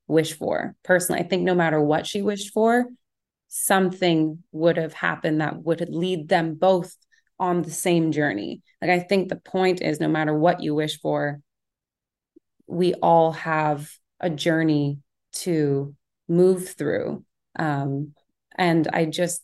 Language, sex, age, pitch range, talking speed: English, female, 20-39, 155-180 Hz, 150 wpm